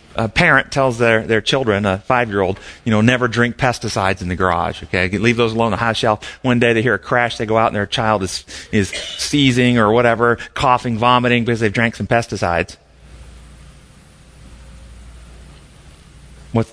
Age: 30-49